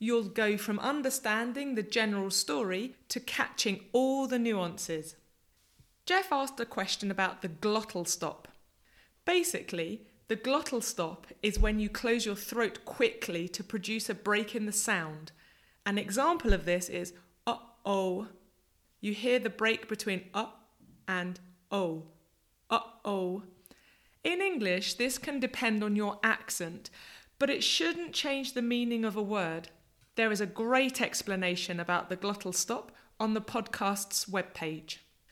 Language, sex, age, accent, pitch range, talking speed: English, female, 30-49, British, 185-245 Hz, 140 wpm